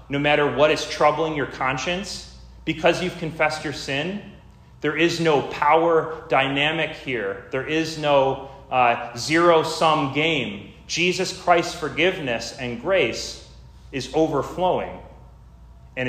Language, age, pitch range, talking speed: English, 30-49, 115-150 Hz, 120 wpm